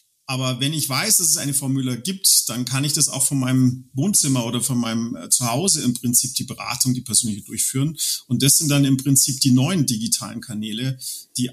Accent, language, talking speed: German, German, 205 wpm